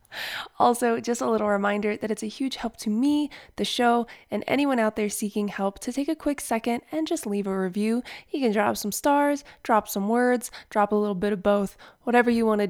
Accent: American